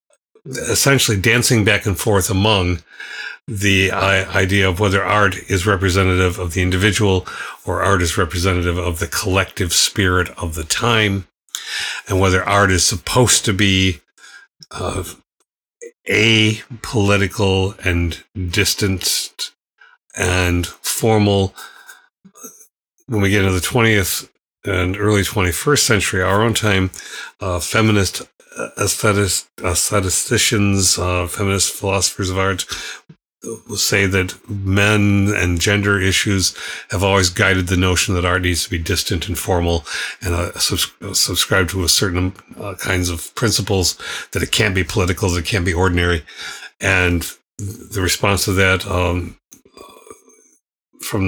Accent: American